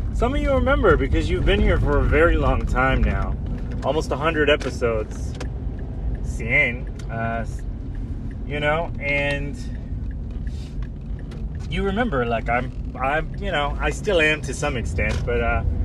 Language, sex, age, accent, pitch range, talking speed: English, male, 30-49, American, 110-140 Hz, 145 wpm